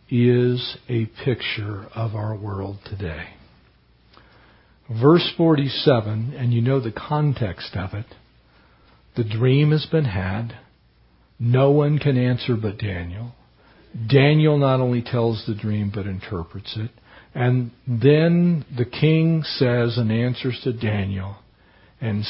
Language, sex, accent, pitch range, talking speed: English, male, American, 105-140 Hz, 125 wpm